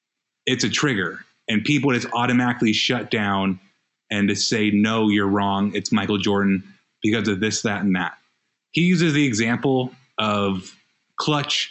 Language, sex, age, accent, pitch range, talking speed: English, male, 30-49, American, 110-130 Hz, 155 wpm